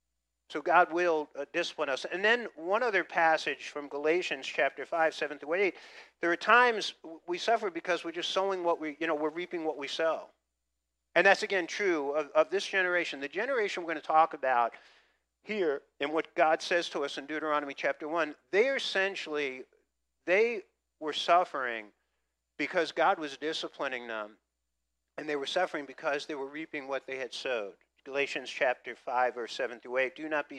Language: English